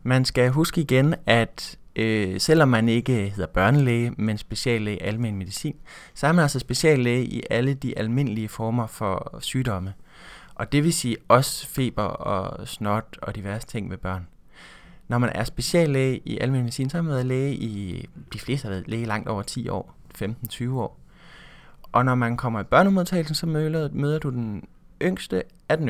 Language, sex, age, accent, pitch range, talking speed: Danish, male, 20-39, native, 110-135 Hz, 180 wpm